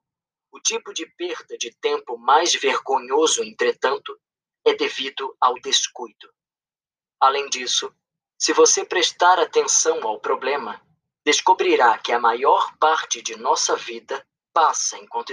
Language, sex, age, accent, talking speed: Portuguese, male, 20-39, Brazilian, 120 wpm